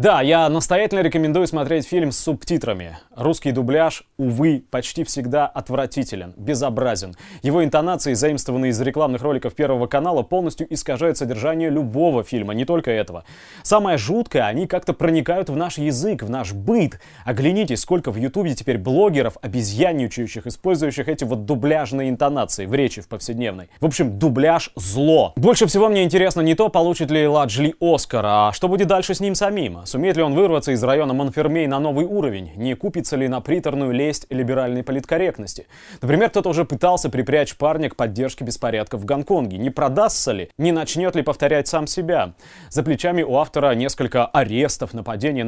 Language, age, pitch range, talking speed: Russian, 20-39, 125-165 Hz, 165 wpm